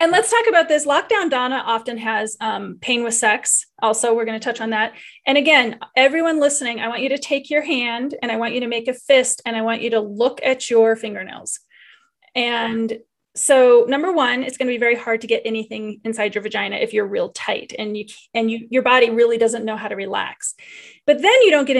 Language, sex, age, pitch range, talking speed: English, female, 30-49, 225-275 Hz, 235 wpm